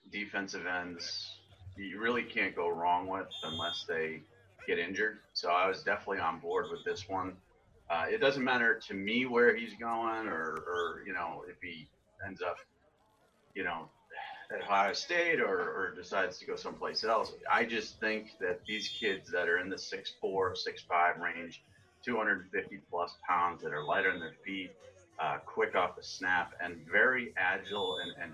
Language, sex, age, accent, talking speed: English, male, 30-49, American, 170 wpm